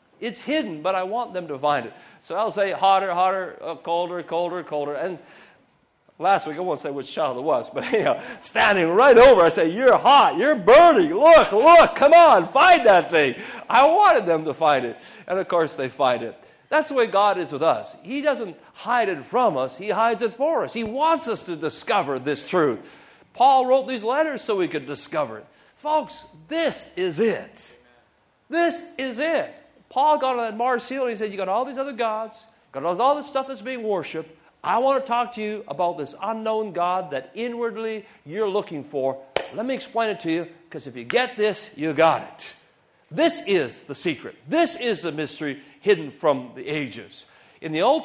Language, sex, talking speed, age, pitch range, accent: English, male, 205 wpm, 50-69, 165-270 Hz, American